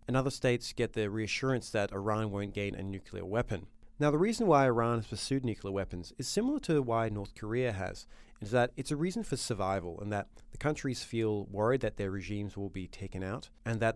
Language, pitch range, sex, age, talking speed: English, 100-130 Hz, male, 30-49, 220 wpm